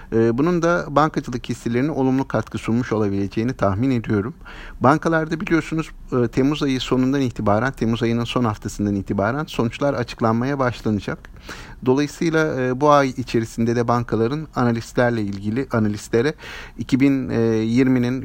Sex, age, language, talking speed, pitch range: male, 50-69, Turkish, 110 wpm, 110-140 Hz